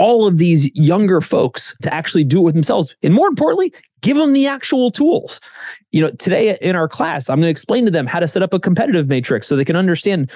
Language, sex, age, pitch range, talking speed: English, male, 30-49, 160-230 Hz, 245 wpm